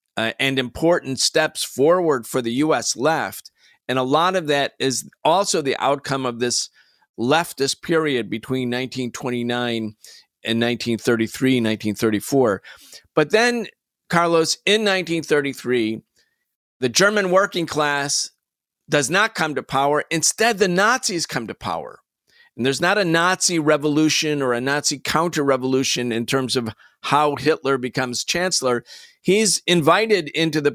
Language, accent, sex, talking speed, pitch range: English, American, male, 135 wpm, 130-175 Hz